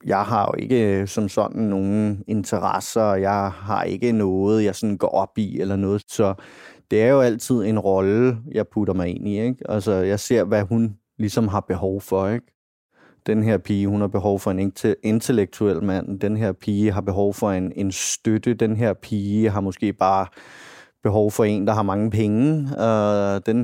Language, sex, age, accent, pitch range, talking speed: Danish, male, 30-49, native, 100-115 Hz, 195 wpm